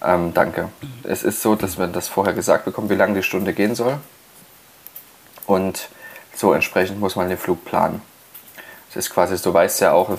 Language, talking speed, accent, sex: German, 200 wpm, German, male